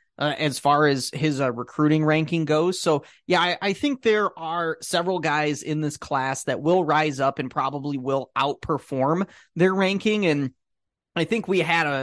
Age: 30-49